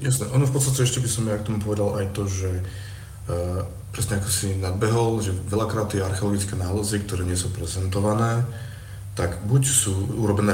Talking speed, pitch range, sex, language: 180 wpm, 95-105 Hz, male, Slovak